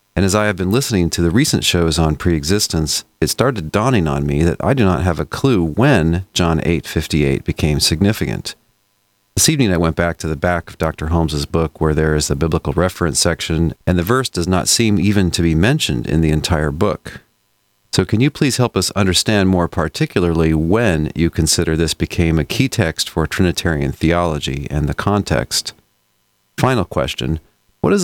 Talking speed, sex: 195 wpm, male